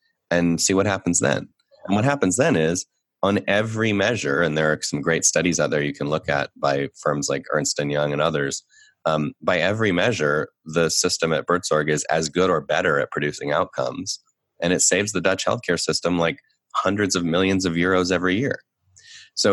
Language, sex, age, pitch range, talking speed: English, male, 30-49, 75-95 Hz, 200 wpm